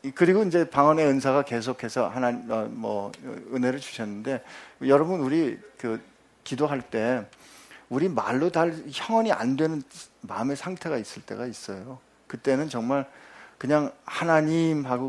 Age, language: 50-69, Korean